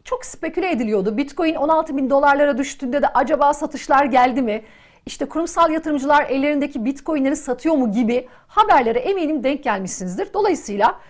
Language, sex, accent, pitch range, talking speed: Turkish, female, native, 250-335 Hz, 140 wpm